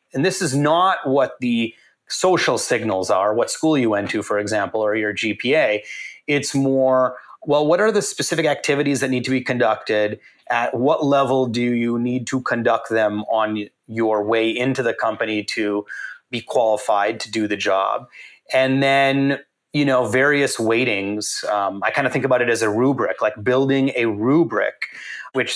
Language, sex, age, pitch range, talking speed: English, male, 30-49, 115-140 Hz, 175 wpm